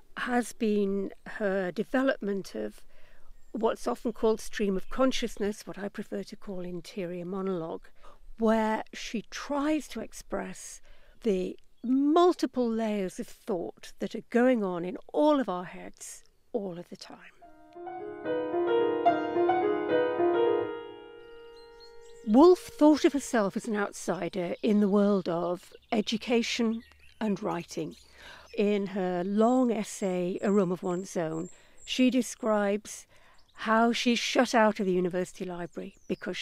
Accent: British